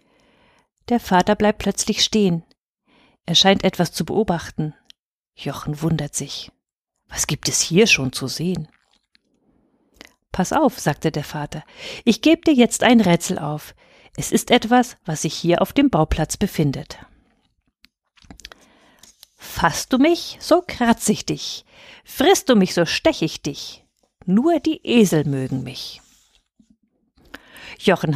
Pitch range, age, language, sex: 155-240 Hz, 50-69, German, female